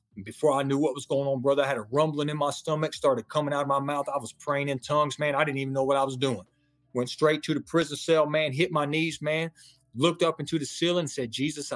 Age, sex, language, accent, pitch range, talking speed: 30-49, male, English, American, 120-150 Hz, 280 wpm